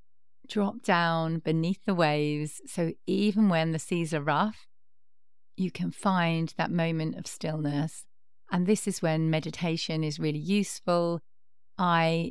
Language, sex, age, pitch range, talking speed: English, female, 40-59, 155-185 Hz, 135 wpm